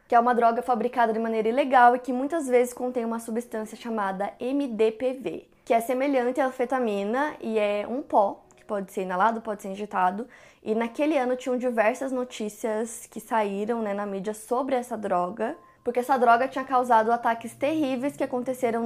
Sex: female